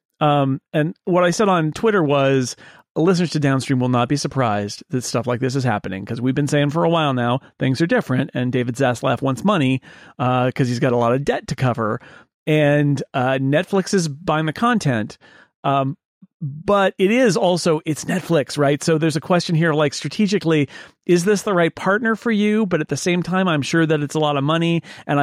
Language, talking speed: English, 215 wpm